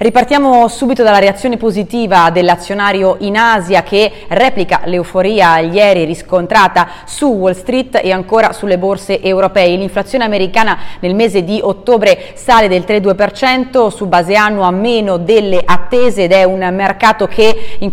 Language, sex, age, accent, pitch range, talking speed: Italian, female, 30-49, native, 180-225 Hz, 140 wpm